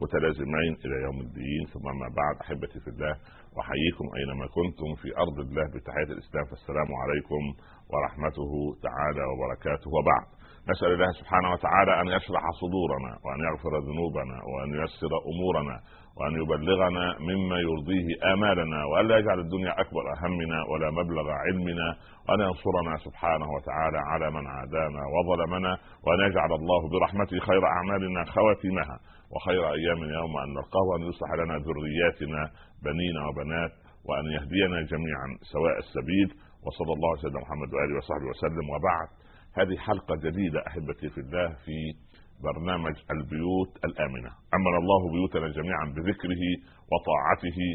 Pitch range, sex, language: 75-90 Hz, male, Arabic